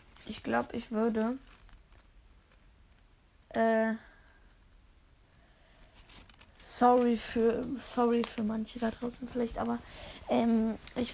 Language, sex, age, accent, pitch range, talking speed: German, female, 20-39, German, 205-245 Hz, 85 wpm